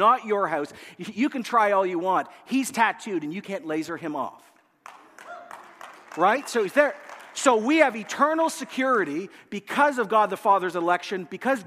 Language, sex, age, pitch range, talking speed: English, male, 50-69, 190-260 Hz, 170 wpm